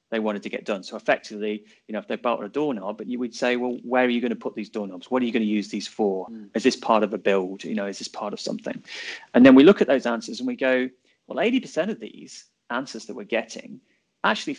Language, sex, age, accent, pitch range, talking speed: English, male, 30-49, British, 105-130 Hz, 275 wpm